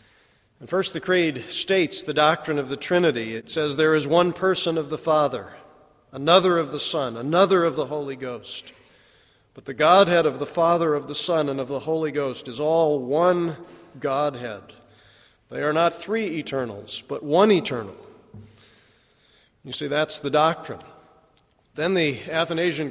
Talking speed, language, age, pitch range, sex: 160 wpm, English, 40-59, 140-170 Hz, male